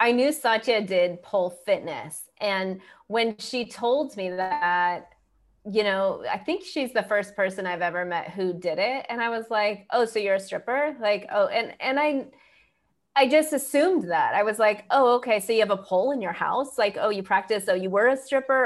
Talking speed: 215 wpm